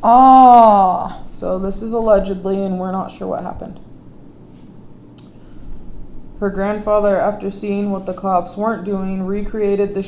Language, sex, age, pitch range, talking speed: English, female, 20-39, 170-195 Hz, 135 wpm